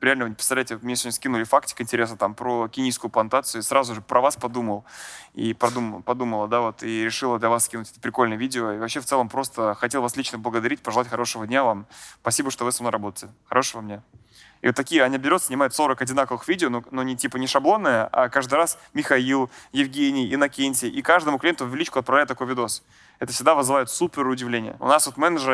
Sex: male